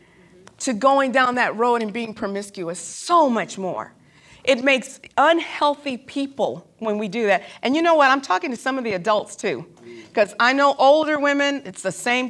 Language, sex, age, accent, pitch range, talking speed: English, female, 40-59, American, 195-255 Hz, 190 wpm